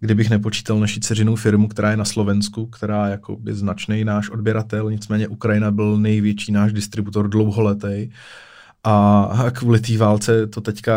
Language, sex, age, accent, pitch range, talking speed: Czech, male, 20-39, native, 105-115 Hz, 155 wpm